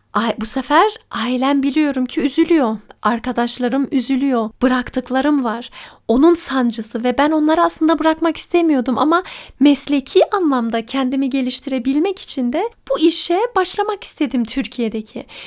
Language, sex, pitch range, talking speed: Turkish, female, 235-305 Hz, 115 wpm